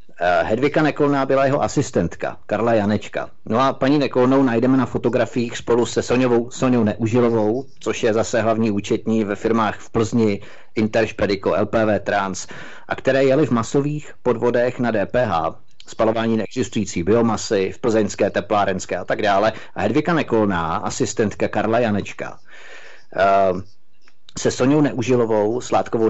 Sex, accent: male, native